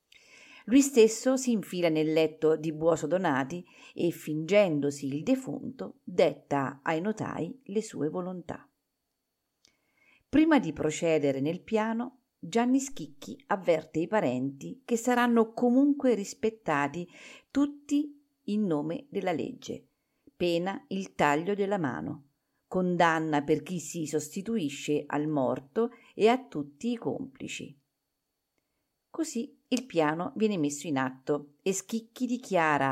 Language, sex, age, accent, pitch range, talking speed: Italian, female, 50-69, native, 155-235 Hz, 120 wpm